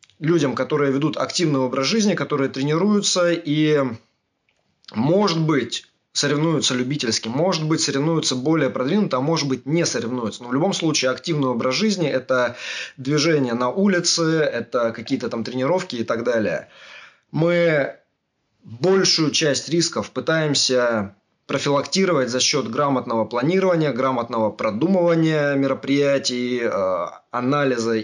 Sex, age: male, 20-39